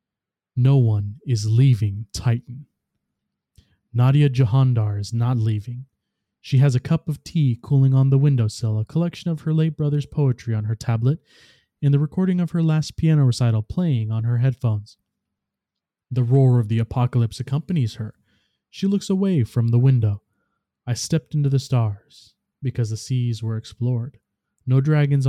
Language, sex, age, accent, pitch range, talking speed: English, male, 20-39, American, 110-135 Hz, 160 wpm